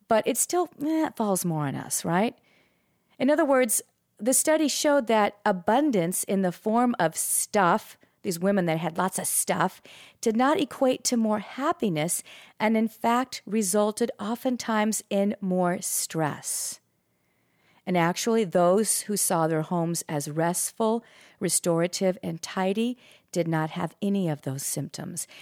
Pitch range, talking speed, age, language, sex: 170-275 Hz, 145 wpm, 40-59, English, female